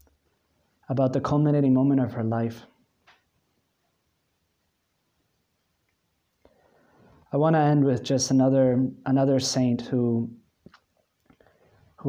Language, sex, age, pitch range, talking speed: English, male, 20-39, 115-135 Hz, 85 wpm